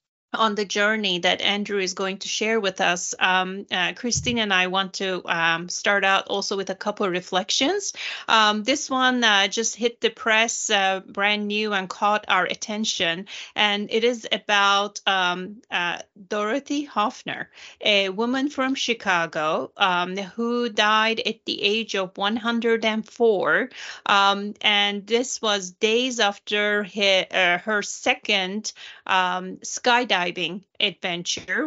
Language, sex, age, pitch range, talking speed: English, female, 30-49, 190-225 Hz, 140 wpm